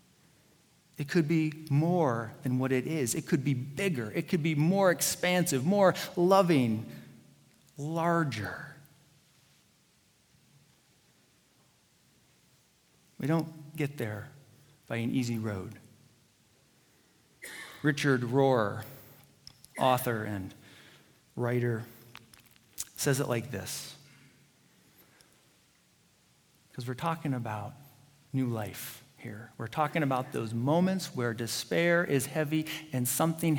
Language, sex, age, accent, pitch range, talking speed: English, male, 40-59, American, 120-155 Hz, 100 wpm